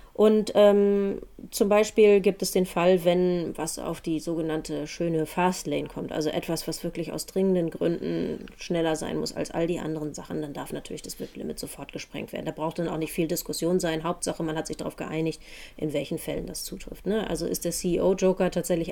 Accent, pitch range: German, 160-190 Hz